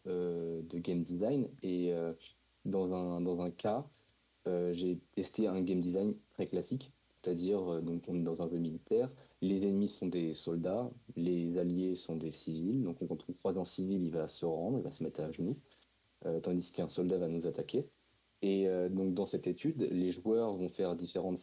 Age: 30-49